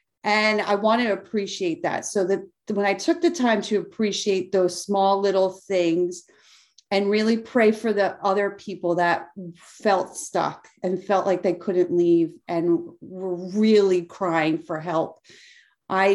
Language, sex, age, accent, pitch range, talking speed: English, female, 30-49, American, 175-210 Hz, 155 wpm